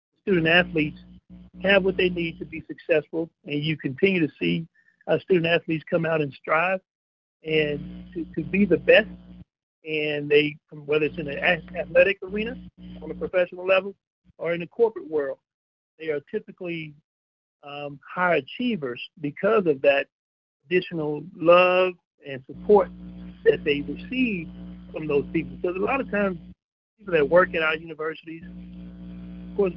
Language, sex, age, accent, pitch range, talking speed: English, male, 50-69, American, 150-185 Hz, 155 wpm